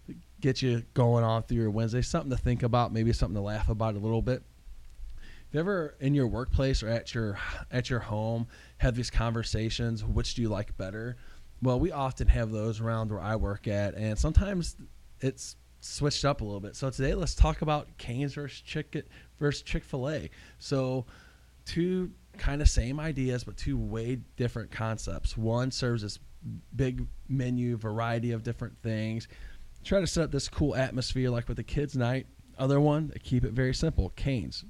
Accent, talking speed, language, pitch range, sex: American, 185 wpm, English, 105-130 Hz, male